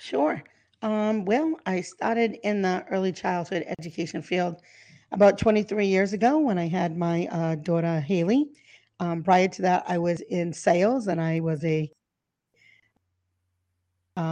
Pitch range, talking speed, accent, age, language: 170-195 Hz, 145 wpm, American, 40-59, English